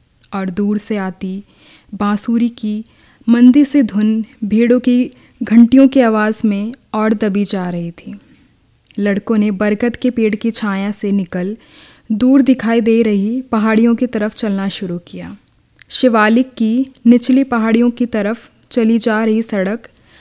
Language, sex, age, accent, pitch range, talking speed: Hindi, female, 20-39, native, 200-240 Hz, 145 wpm